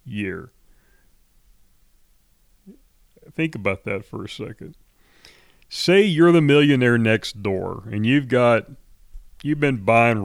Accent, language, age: American, English, 40-59